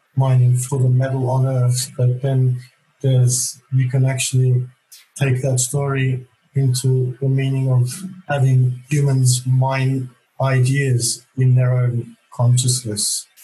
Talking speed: 120 wpm